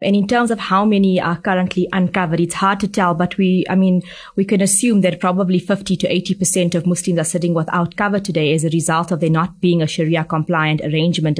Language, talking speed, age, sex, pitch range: English, 225 wpm, 20-39, female, 175-210 Hz